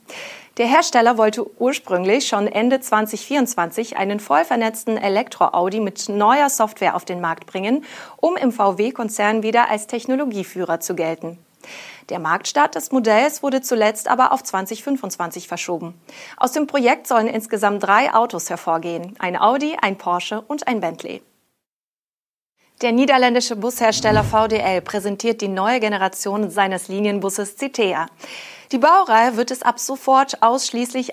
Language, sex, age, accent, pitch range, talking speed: German, female, 30-49, German, 190-250 Hz, 130 wpm